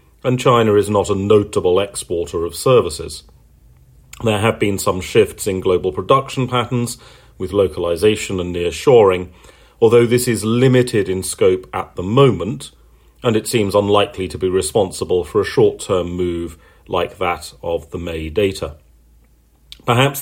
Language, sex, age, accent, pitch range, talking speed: English, male, 40-59, British, 90-125 Hz, 145 wpm